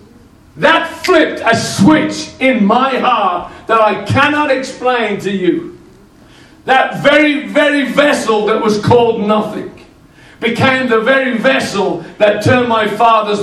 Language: English